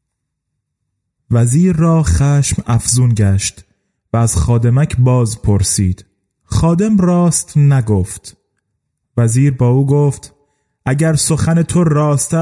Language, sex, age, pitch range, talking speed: Persian, male, 30-49, 115-160 Hz, 100 wpm